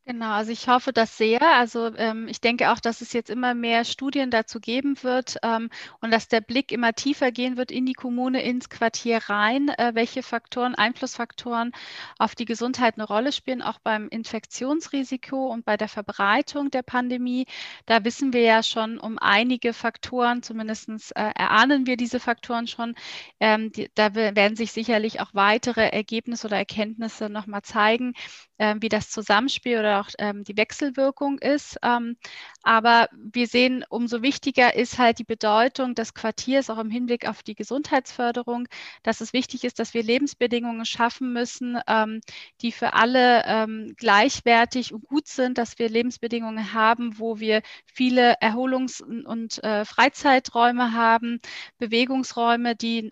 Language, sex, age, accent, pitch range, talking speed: German, female, 30-49, German, 220-250 Hz, 160 wpm